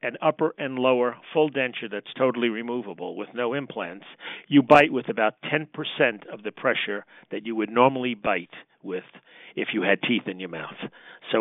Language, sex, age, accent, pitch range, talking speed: English, male, 50-69, American, 110-140 Hz, 180 wpm